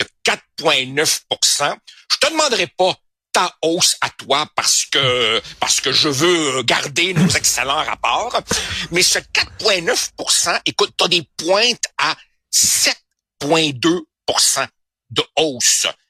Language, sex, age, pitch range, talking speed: French, male, 60-79, 145-210 Hz, 110 wpm